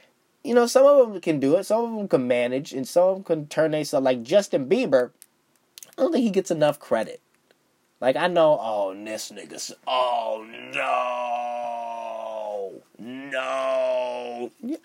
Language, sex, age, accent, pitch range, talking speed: English, male, 20-39, American, 125-205 Hz, 160 wpm